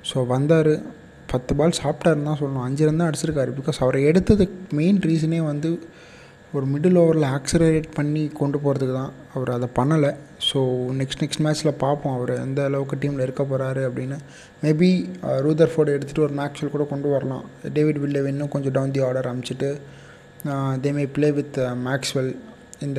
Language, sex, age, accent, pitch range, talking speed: Tamil, male, 20-39, native, 130-155 Hz, 155 wpm